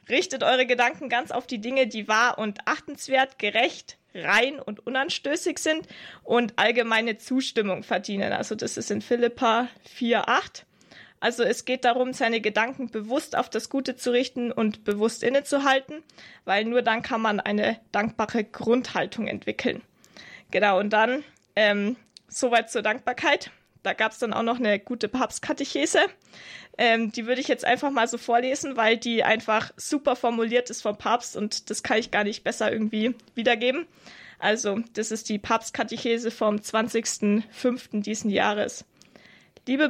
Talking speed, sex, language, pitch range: 155 wpm, female, German, 215-255 Hz